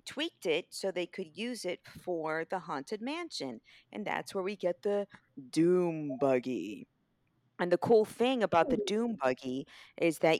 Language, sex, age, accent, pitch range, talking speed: English, female, 40-59, American, 155-200 Hz, 165 wpm